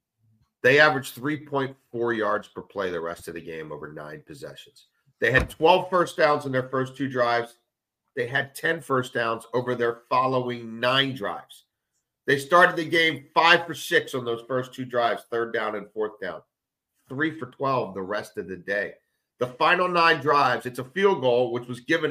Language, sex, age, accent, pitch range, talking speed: English, male, 50-69, American, 120-150 Hz, 190 wpm